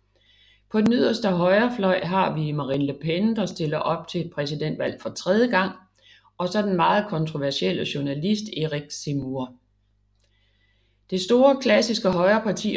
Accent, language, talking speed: native, Danish, 140 wpm